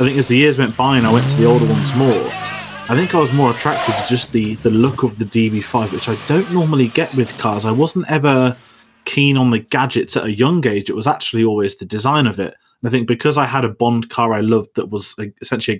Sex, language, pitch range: male, English, 110-130 Hz